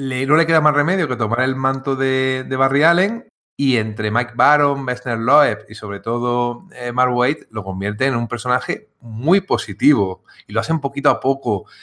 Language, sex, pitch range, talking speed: Spanish, male, 110-145 Hz, 200 wpm